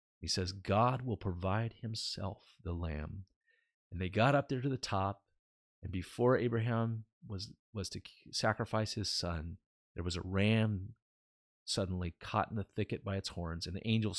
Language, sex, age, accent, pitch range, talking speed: English, male, 40-59, American, 90-110 Hz, 170 wpm